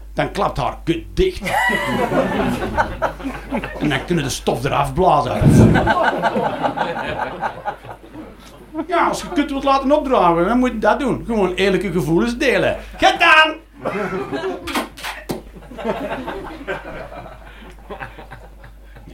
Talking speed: 95 wpm